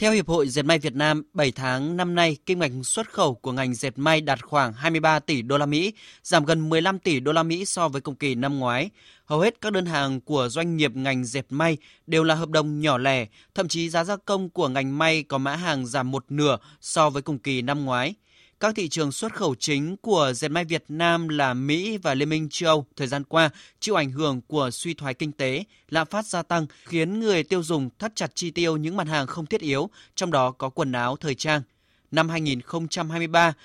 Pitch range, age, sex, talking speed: 140-170 Hz, 20-39, male, 235 wpm